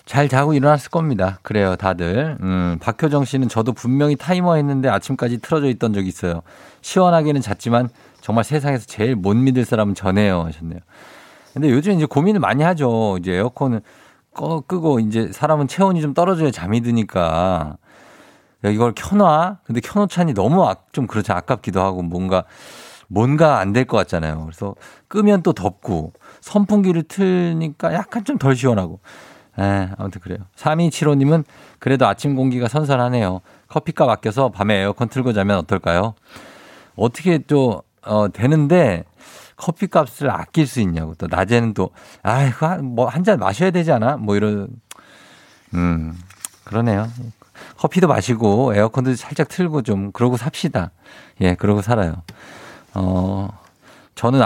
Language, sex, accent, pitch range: Korean, male, native, 100-150 Hz